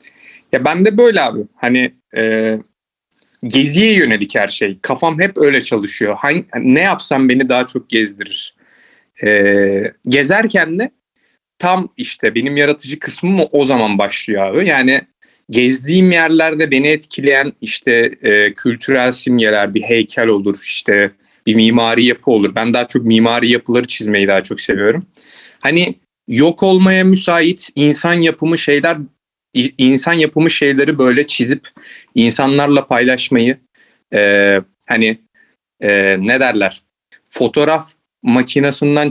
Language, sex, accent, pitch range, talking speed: Turkish, male, native, 110-145 Hz, 125 wpm